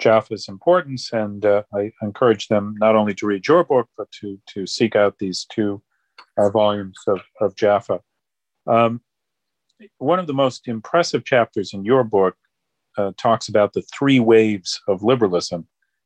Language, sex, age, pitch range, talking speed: English, male, 40-59, 100-120 Hz, 160 wpm